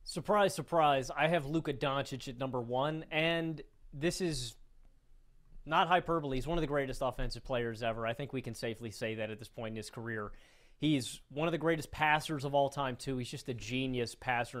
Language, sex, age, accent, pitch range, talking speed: English, male, 30-49, American, 125-155 Hz, 205 wpm